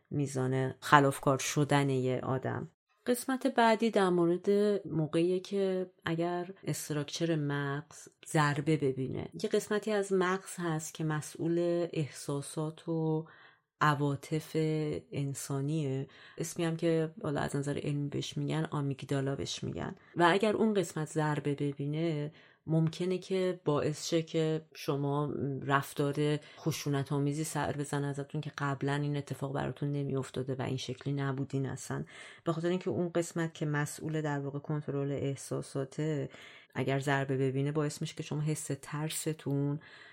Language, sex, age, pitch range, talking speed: Persian, female, 30-49, 135-165 Hz, 125 wpm